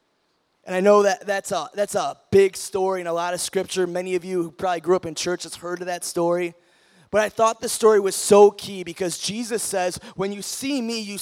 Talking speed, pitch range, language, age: 240 wpm, 180-225 Hz, English, 20-39